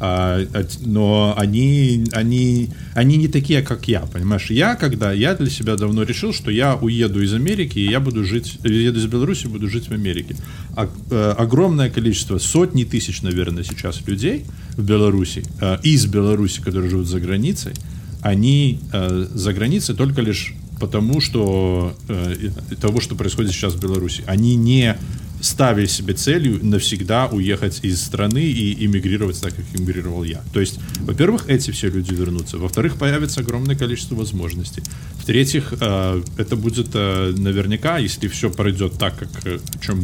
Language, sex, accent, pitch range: Russian, male, native, 95-120 Hz